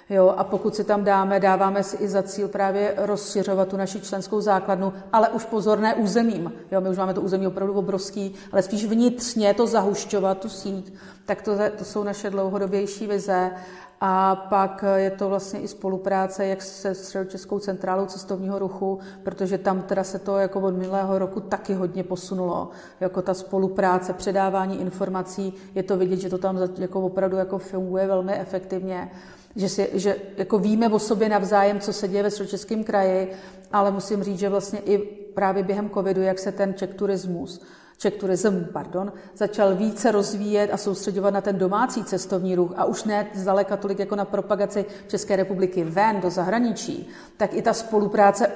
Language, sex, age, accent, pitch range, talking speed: Czech, female, 40-59, native, 190-205 Hz, 170 wpm